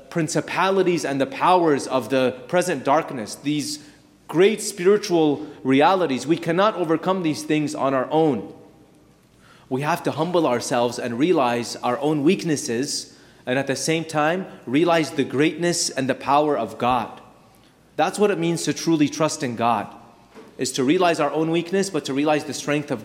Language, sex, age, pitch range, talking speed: English, male, 30-49, 135-175 Hz, 165 wpm